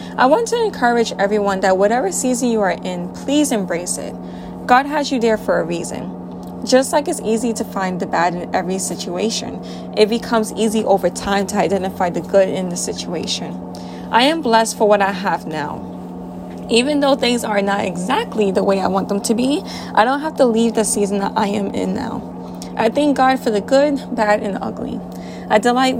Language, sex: English, female